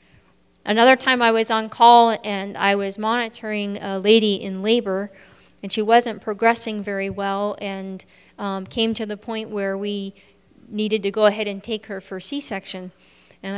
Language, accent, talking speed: English, American, 170 wpm